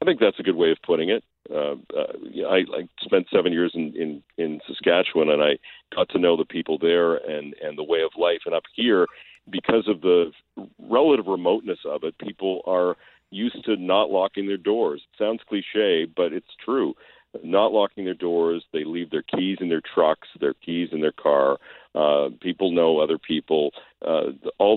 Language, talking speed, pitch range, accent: English, 200 wpm, 80-110 Hz, American